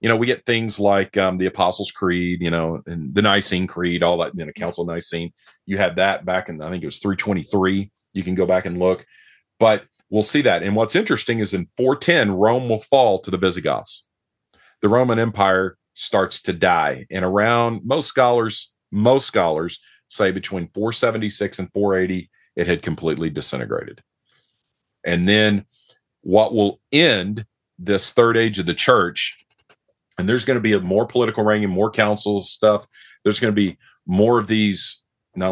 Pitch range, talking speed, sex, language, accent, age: 90-110 Hz, 180 wpm, male, English, American, 40-59